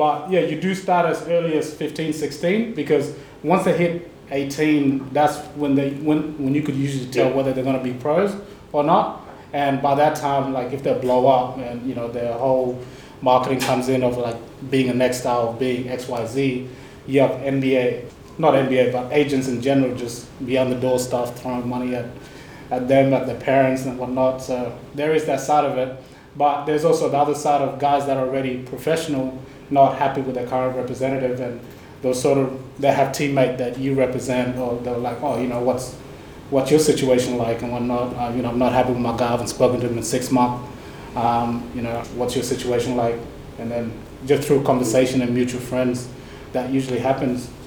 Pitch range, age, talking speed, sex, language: 125-140 Hz, 20-39, 210 wpm, male, English